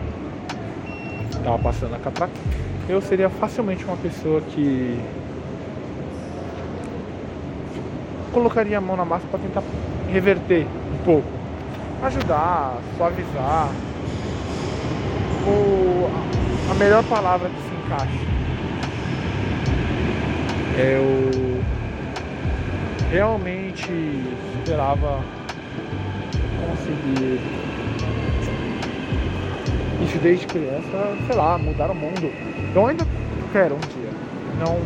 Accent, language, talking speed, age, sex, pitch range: Brazilian, Portuguese, 80 wpm, 20-39, male, 130-180 Hz